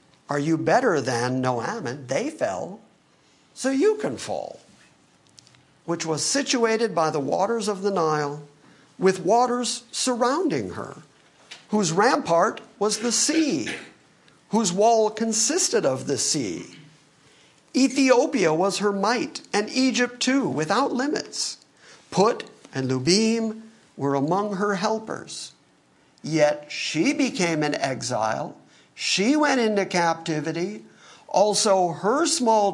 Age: 50-69